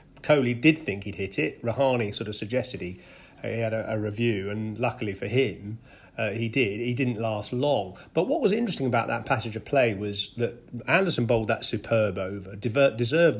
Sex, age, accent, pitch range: male, 40-59, British, 105-130 Hz